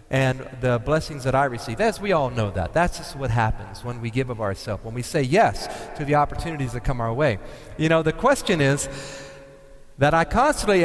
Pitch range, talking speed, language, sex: 130-170 Hz, 215 wpm, English, male